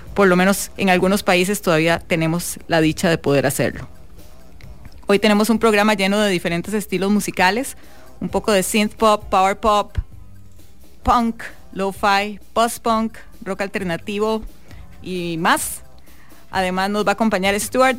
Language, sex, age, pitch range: English, female, 30-49, 175-220 Hz